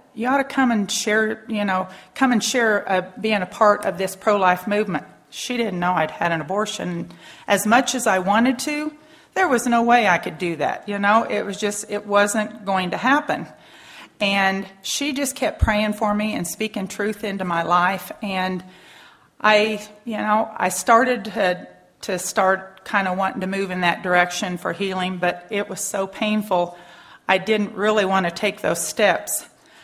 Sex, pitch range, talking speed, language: female, 185-230 Hz, 190 wpm, English